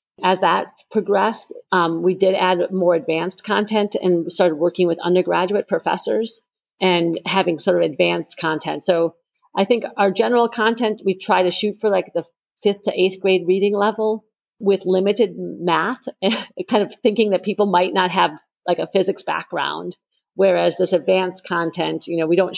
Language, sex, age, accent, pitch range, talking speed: English, female, 40-59, American, 170-195 Hz, 170 wpm